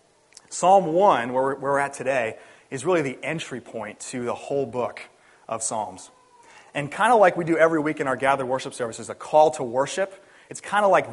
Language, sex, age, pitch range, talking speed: English, male, 30-49, 125-165 Hz, 205 wpm